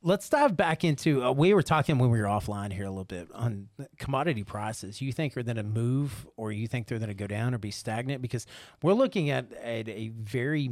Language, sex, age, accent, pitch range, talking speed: English, male, 30-49, American, 100-125 Hz, 245 wpm